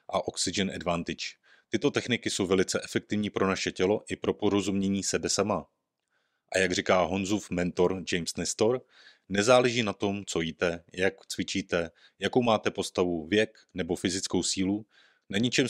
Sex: male